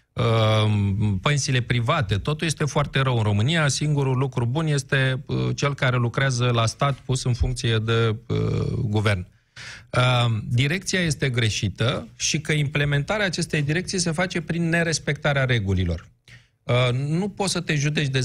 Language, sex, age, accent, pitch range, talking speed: Romanian, male, 40-59, native, 115-150 Hz, 135 wpm